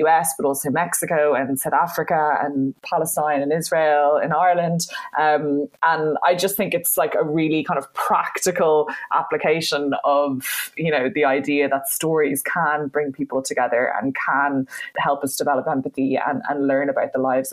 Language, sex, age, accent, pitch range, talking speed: English, female, 20-39, Irish, 145-165 Hz, 170 wpm